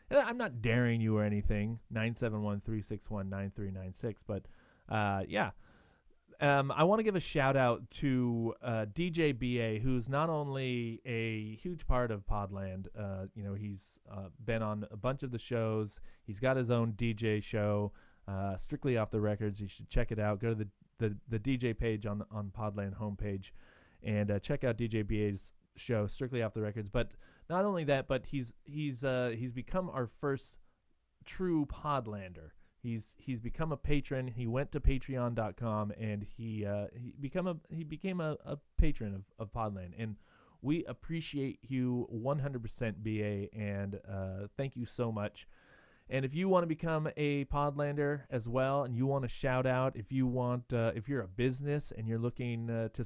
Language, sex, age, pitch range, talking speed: English, male, 30-49, 105-135 Hz, 180 wpm